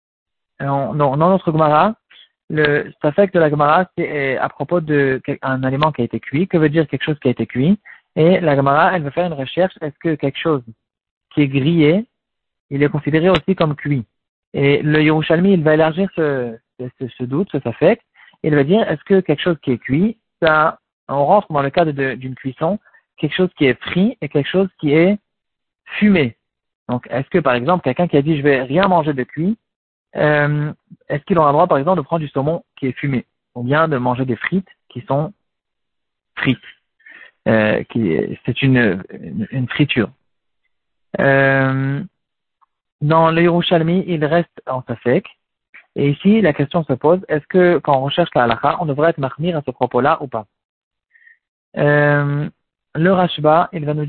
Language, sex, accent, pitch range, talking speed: French, male, French, 135-170 Hz, 195 wpm